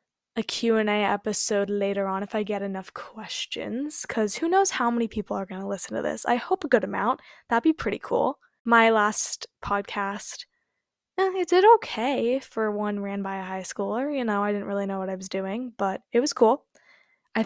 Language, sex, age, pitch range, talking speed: English, female, 10-29, 200-245 Hz, 205 wpm